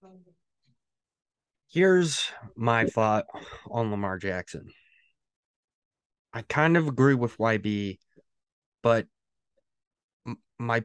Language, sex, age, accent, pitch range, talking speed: English, male, 20-39, American, 125-165 Hz, 75 wpm